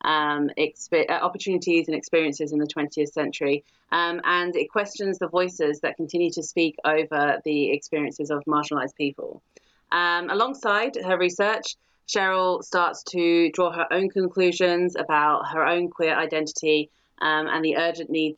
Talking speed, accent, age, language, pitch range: 145 wpm, British, 30-49, English, 150-170 Hz